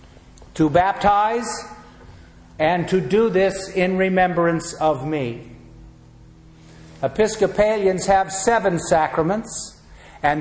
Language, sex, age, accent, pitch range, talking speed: English, male, 50-69, American, 165-200 Hz, 85 wpm